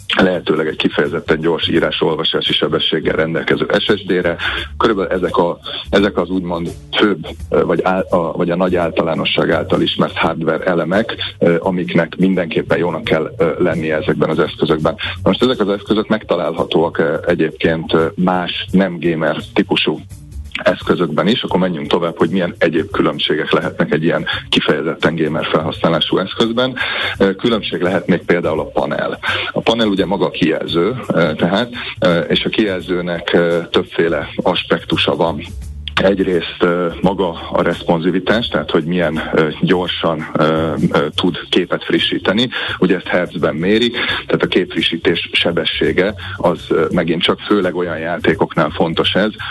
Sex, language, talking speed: male, Hungarian, 125 wpm